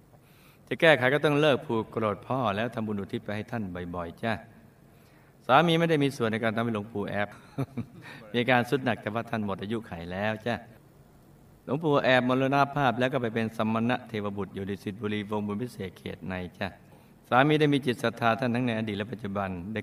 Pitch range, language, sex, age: 105-125 Hz, Thai, male, 60-79